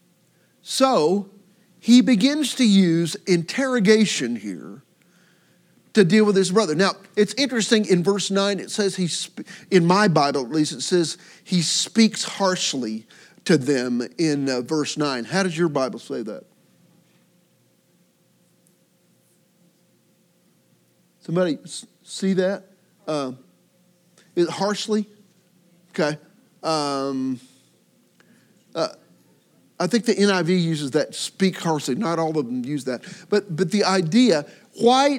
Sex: male